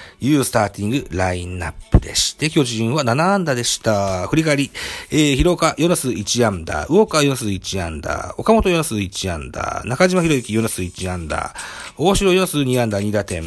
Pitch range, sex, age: 95-150 Hz, male, 40-59